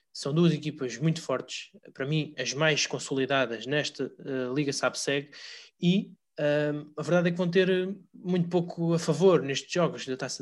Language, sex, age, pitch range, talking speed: Portuguese, male, 20-39, 140-175 Hz, 175 wpm